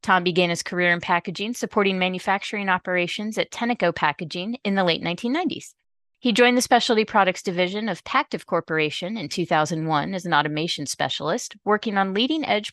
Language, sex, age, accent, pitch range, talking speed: English, female, 30-49, American, 160-210 Hz, 160 wpm